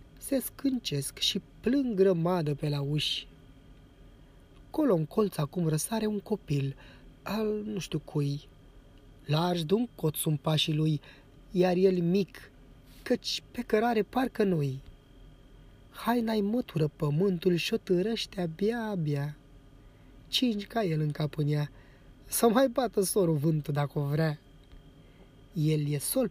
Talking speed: 130 wpm